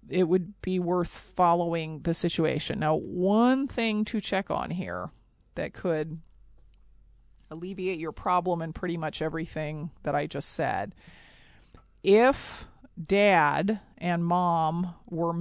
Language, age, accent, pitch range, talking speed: English, 40-59, American, 160-195 Hz, 125 wpm